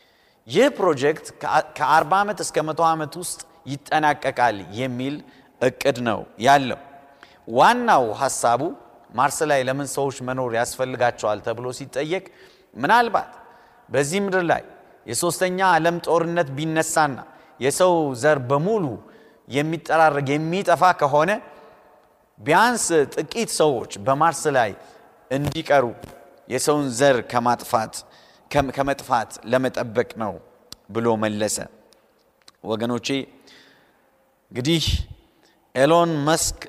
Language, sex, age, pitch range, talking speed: Amharic, male, 30-49, 130-165 Hz, 85 wpm